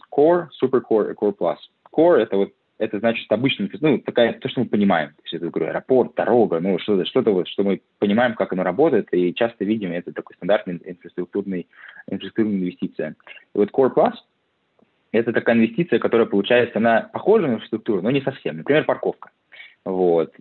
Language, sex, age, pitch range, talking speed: Russian, male, 20-39, 95-120 Hz, 175 wpm